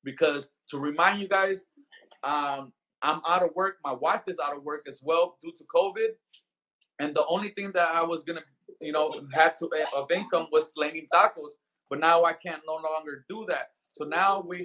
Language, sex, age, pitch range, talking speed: English, male, 30-49, 150-190 Hz, 205 wpm